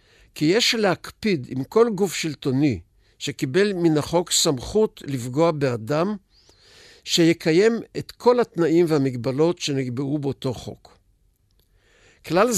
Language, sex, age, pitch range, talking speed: Hebrew, male, 60-79, 130-170 Hz, 105 wpm